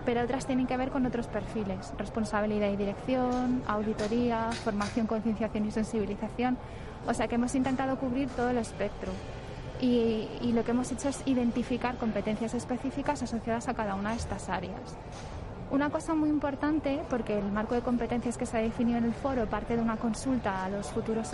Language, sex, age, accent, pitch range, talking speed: Spanish, female, 20-39, Spanish, 225-260 Hz, 185 wpm